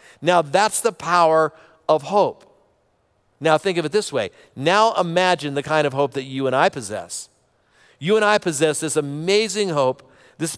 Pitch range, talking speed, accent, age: 150-195 Hz, 175 wpm, American, 50-69